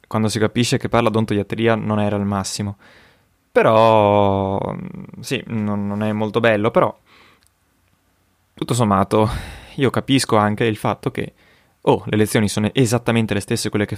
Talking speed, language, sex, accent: 155 wpm, Italian, male, native